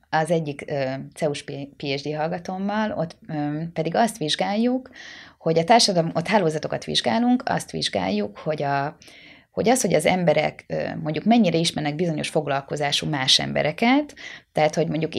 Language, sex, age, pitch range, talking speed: Hungarian, female, 20-39, 140-175 Hz, 130 wpm